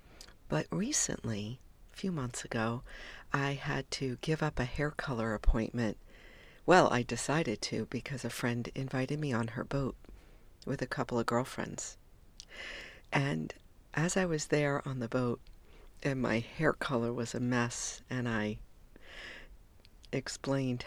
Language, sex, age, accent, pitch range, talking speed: English, female, 50-69, American, 110-135 Hz, 145 wpm